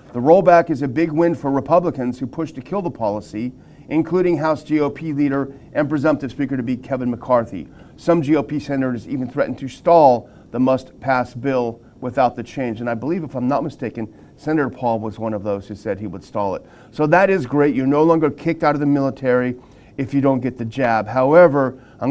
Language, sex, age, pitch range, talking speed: English, male, 40-59, 125-150 Hz, 210 wpm